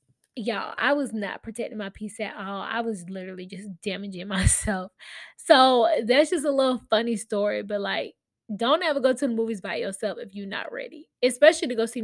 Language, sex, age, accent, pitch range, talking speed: English, female, 10-29, American, 205-255 Hz, 200 wpm